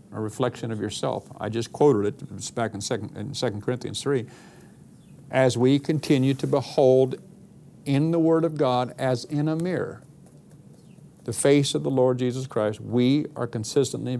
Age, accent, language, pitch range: 50-69, American, English, 125-155 Hz